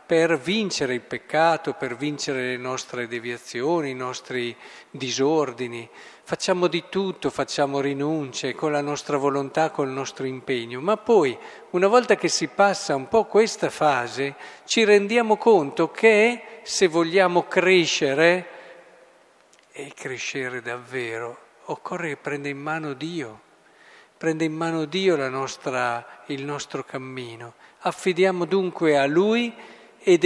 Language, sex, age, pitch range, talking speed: Italian, male, 50-69, 135-175 Hz, 125 wpm